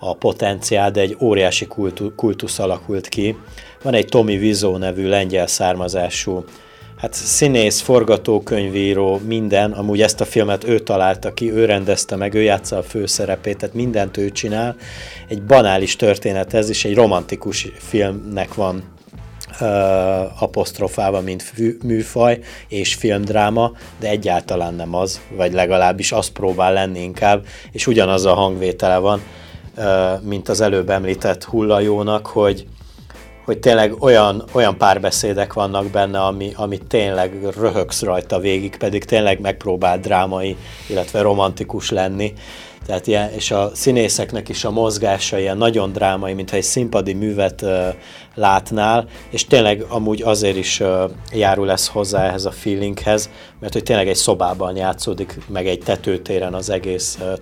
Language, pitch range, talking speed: Hungarian, 95-110 Hz, 140 wpm